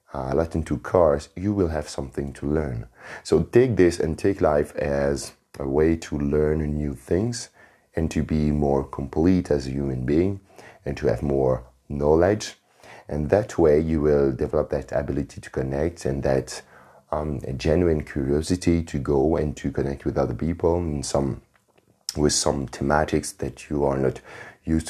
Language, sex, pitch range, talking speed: English, male, 65-75 Hz, 165 wpm